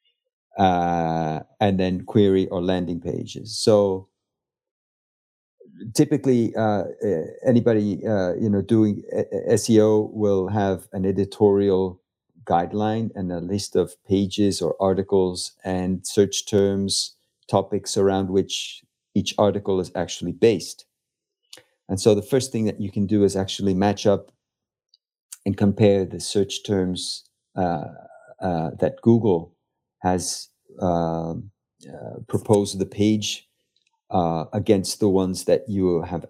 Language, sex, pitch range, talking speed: English, male, 90-105 Hz, 125 wpm